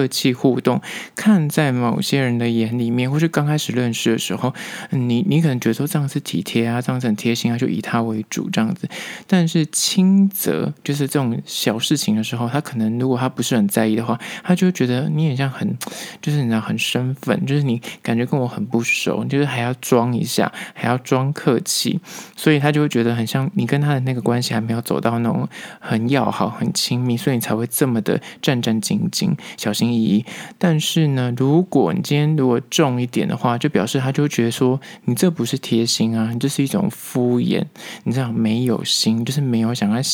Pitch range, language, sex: 115-150 Hz, Chinese, male